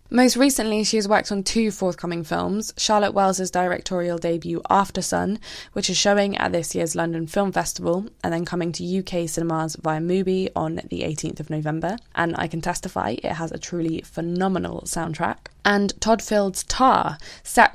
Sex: female